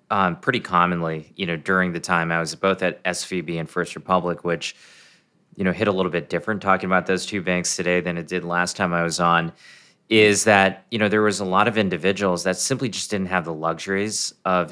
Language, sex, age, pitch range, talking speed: English, male, 30-49, 85-100 Hz, 230 wpm